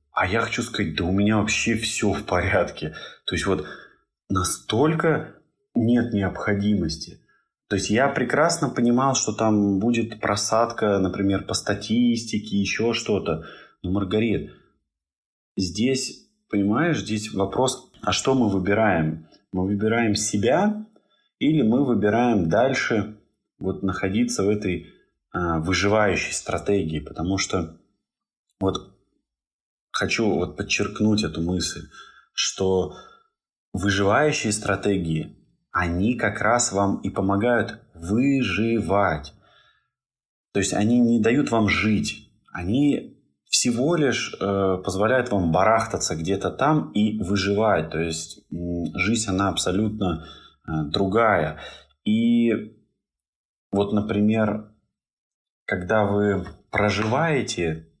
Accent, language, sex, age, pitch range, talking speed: native, Russian, male, 20-39, 95-115 Hz, 105 wpm